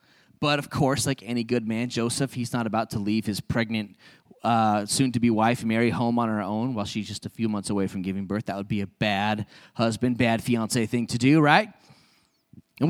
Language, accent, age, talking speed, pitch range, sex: English, American, 20-39, 215 wpm, 120-170 Hz, male